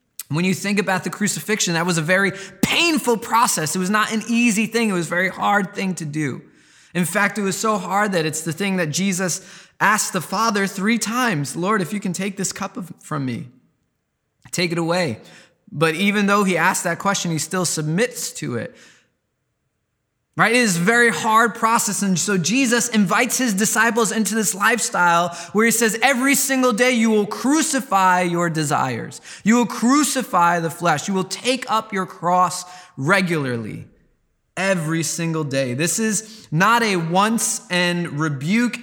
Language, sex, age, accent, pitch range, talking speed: English, male, 20-39, American, 160-215 Hz, 180 wpm